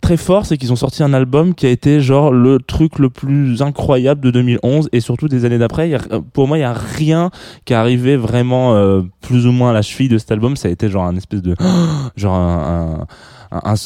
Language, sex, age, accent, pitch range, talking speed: French, male, 20-39, French, 100-130 Hz, 230 wpm